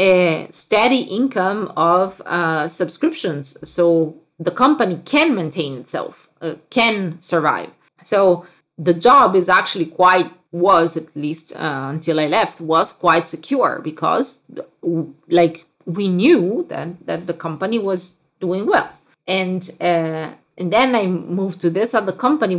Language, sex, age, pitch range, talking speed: English, female, 30-49, 165-210 Hz, 140 wpm